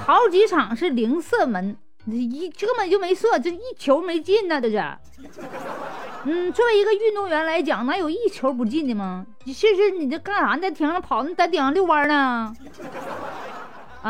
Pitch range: 235-340 Hz